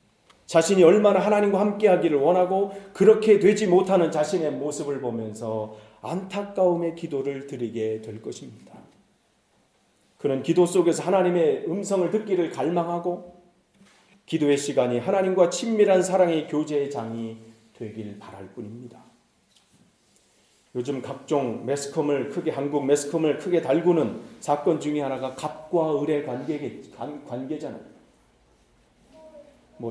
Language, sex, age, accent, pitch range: Korean, male, 40-59, native, 135-195 Hz